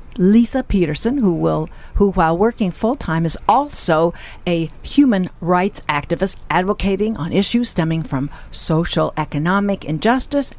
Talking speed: 130 wpm